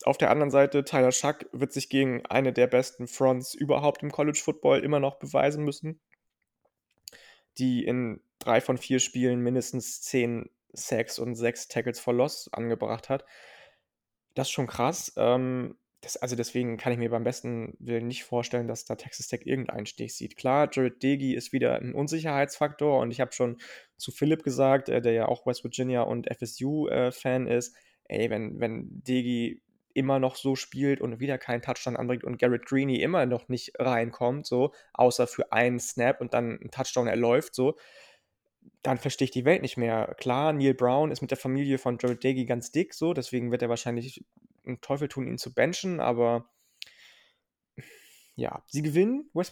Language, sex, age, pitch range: German, male, 20-39, 120-140 Hz